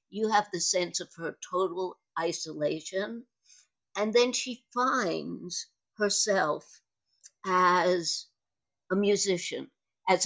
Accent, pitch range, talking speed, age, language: American, 170-260 Hz, 100 wpm, 60-79, English